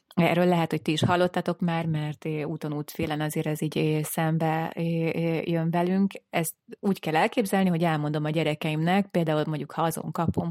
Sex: female